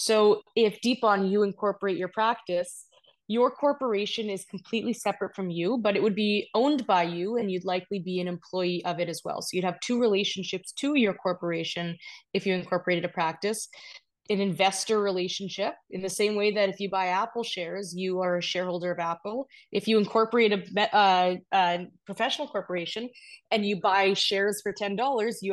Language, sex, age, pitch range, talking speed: English, female, 20-39, 175-215 Hz, 180 wpm